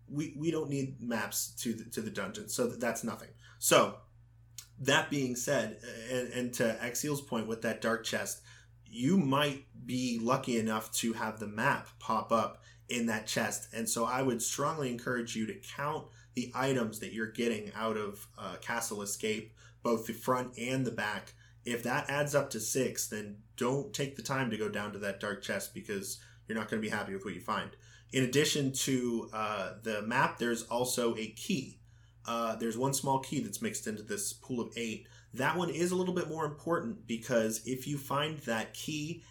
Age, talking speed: 20-39, 195 wpm